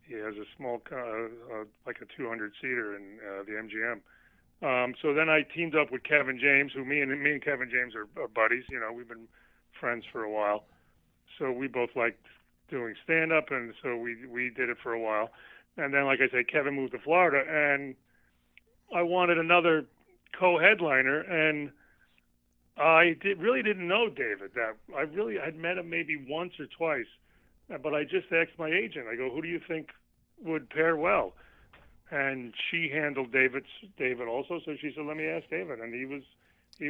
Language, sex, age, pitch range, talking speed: English, male, 30-49, 125-165 Hz, 190 wpm